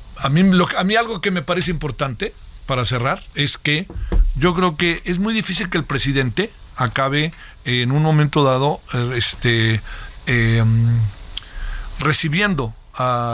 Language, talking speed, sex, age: Spanish, 135 wpm, male, 50-69